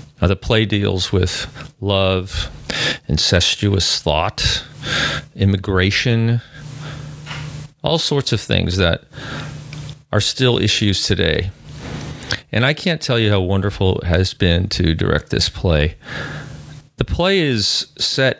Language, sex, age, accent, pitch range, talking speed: English, male, 40-59, American, 90-130 Hz, 115 wpm